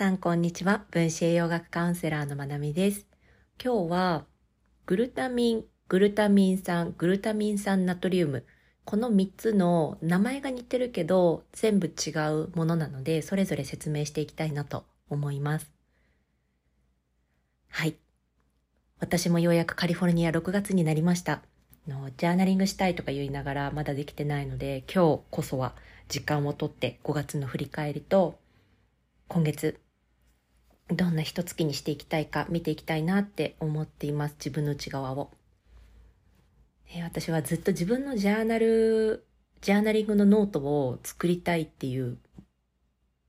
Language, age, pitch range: Japanese, 40-59, 135-185 Hz